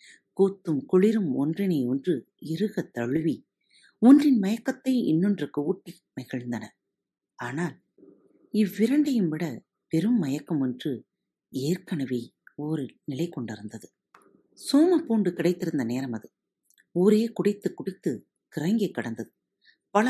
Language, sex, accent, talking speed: Tamil, female, native, 95 wpm